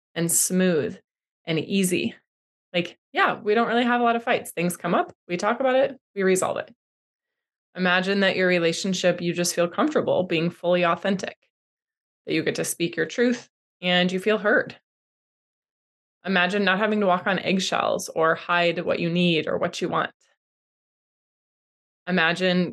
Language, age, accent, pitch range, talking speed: English, 20-39, American, 170-205 Hz, 165 wpm